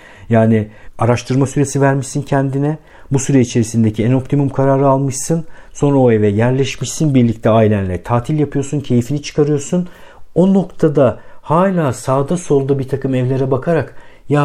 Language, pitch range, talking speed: Turkish, 110-145 Hz, 135 wpm